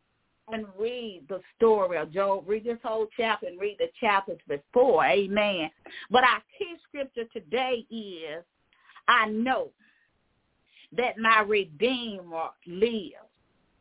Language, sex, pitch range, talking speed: English, female, 215-275 Hz, 120 wpm